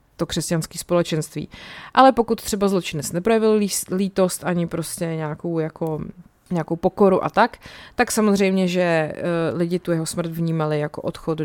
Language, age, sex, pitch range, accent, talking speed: Czech, 20-39, female, 165-195 Hz, native, 145 wpm